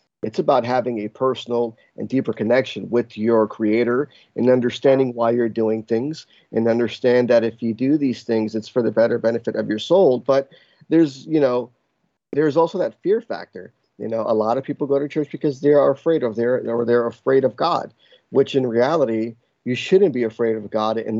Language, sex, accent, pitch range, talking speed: English, male, American, 110-125 Hz, 205 wpm